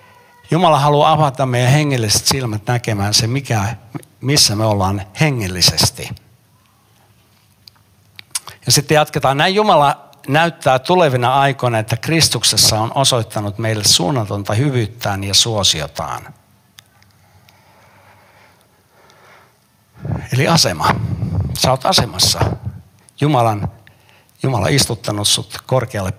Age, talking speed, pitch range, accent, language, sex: 60-79, 90 wpm, 105-130 Hz, native, Finnish, male